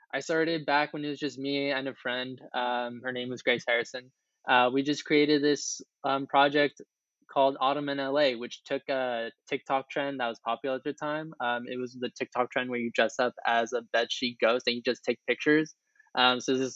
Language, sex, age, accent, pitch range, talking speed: English, male, 10-29, American, 120-140 Hz, 220 wpm